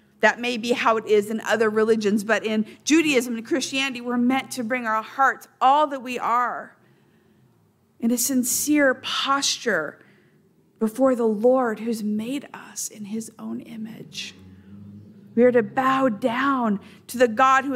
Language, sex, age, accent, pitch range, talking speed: English, female, 50-69, American, 215-265 Hz, 160 wpm